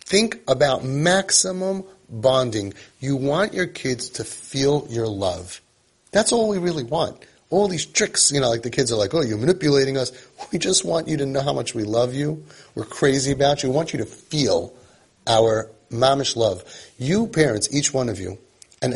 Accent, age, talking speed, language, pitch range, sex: American, 30-49, 195 wpm, English, 105-145 Hz, male